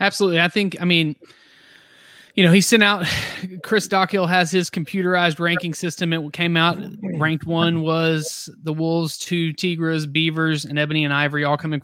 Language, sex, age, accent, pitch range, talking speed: English, male, 20-39, American, 150-180 Hz, 170 wpm